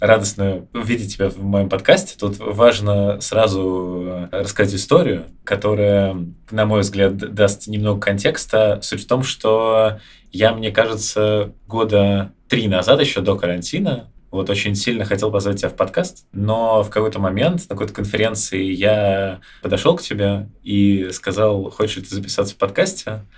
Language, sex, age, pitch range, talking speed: Russian, male, 20-39, 95-110 Hz, 150 wpm